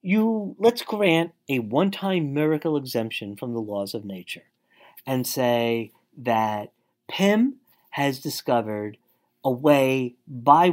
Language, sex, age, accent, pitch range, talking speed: English, male, 40-59, American, 125-190 Hz, 115 wpm